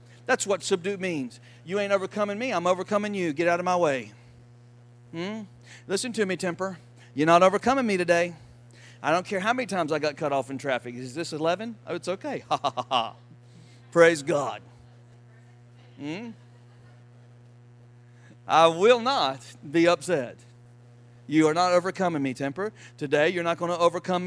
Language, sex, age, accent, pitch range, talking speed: English, male, 50-69, American, 120-190 Hz, 165 wpm